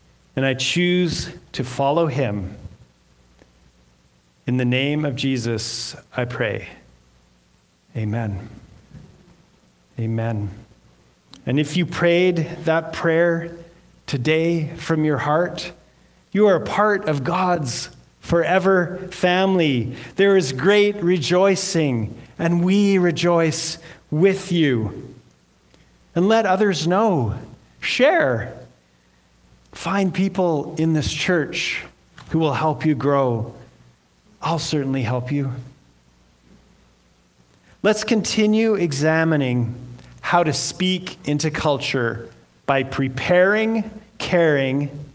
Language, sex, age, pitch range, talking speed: English, male, 40-59, 115-180 Hz, 95 wpm